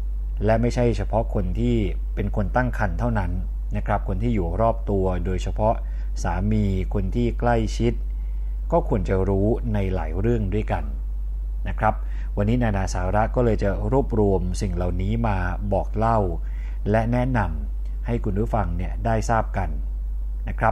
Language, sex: Thai, male